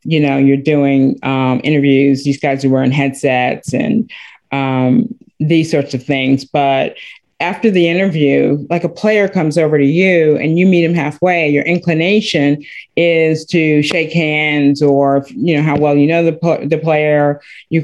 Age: 40-59